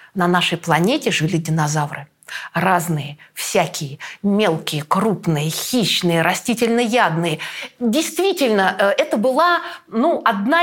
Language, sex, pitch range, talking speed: Russian, female, 170-285 Hz, 90 wpm